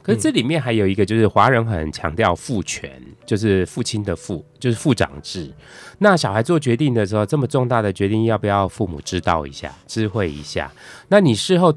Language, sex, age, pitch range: Chinese, male, 20-39, 90-120 Hz